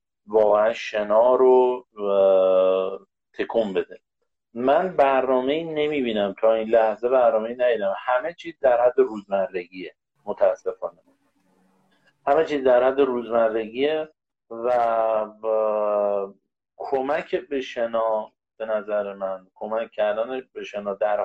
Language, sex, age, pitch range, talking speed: Persian, male, 50-69, 110-140 Hz, 105 wpm